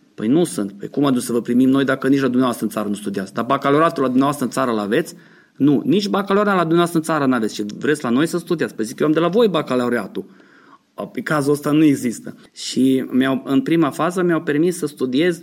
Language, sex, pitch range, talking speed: Romanian, male, 125-160 Hz, 245 wpm